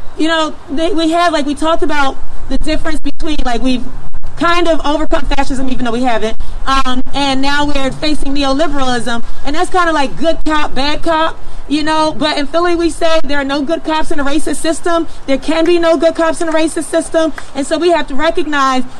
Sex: female